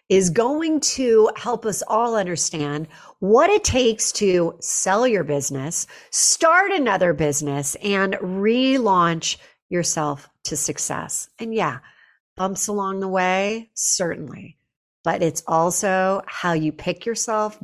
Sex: female